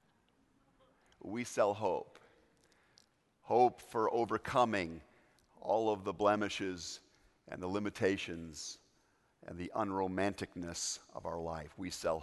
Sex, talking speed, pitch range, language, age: male, 105 wpm, 90-120 Hz, English, 50-69